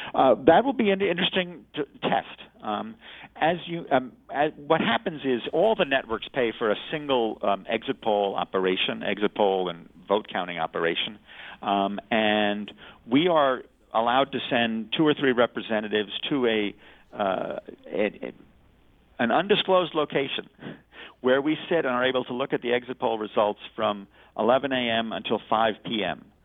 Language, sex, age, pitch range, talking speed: English, male, 50-69, 105-140 Hz, 160 wpm